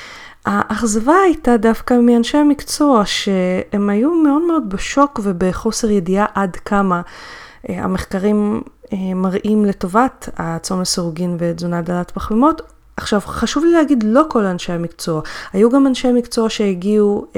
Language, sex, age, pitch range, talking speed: Hebrew, female, 30-49, 180-230 Hz, 120 wpm